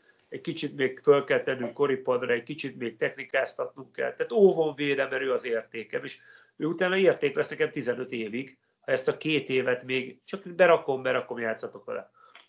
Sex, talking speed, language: male, 175 wpm, Hungarian